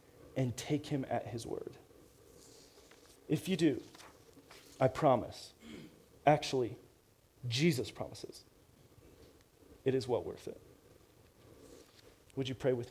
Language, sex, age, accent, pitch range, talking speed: English, male, 40-59, American, 125-155 Hz, 105 wpm